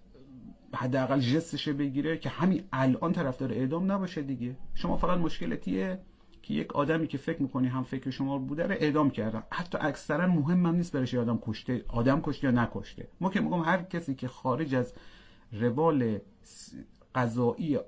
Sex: male